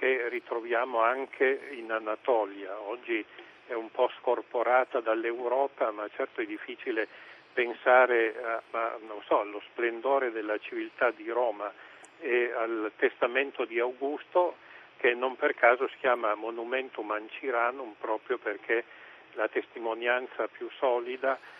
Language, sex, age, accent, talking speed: Italian, male, 50-69, native, 125 wpm